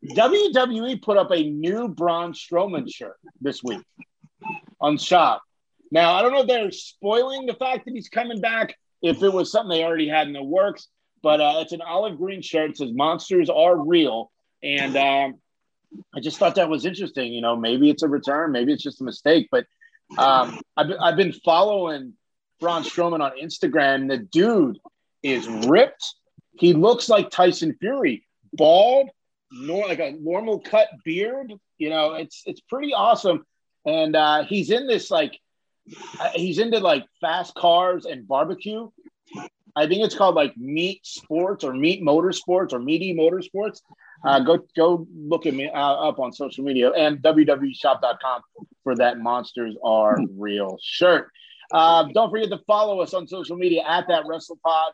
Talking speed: 170 wpm